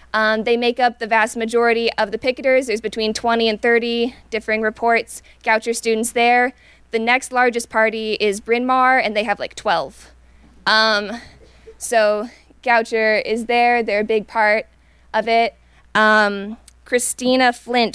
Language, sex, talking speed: English, female, 155 wpm